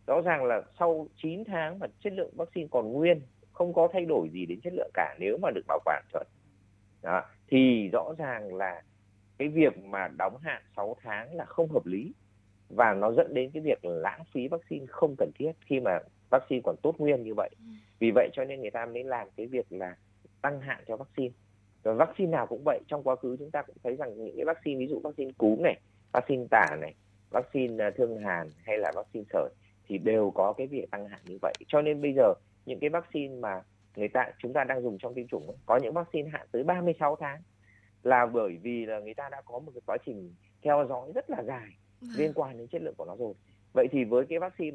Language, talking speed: Vietnamese, 230 wpm